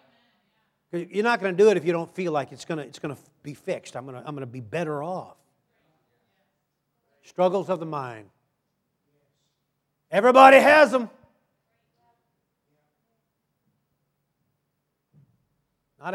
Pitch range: 130-175 Hz